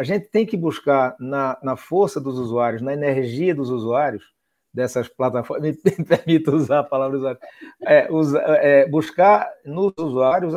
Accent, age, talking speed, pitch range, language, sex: Brazilian, 50-69, 140 wpm, 140-200 Hz, Portuguese, male